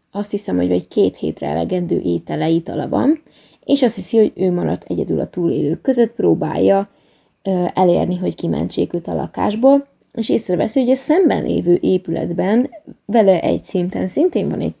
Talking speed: 160 wpm